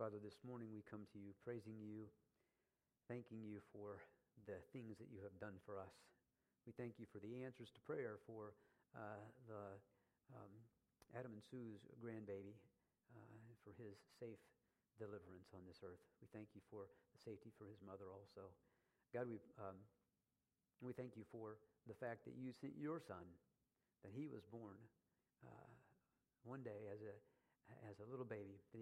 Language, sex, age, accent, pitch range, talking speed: English, male, 50-69, American, 100-120 Hz, 170 wpm